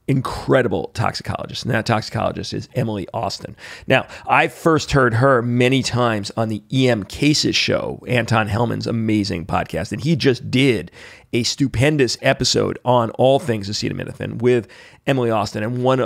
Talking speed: 150 wpm